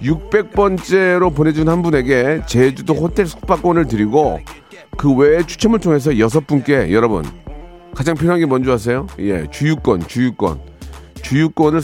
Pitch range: 120-175 Hz